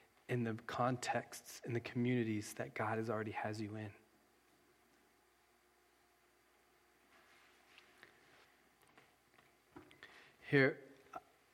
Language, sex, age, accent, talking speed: English, male, 30-49, American, 75 wpm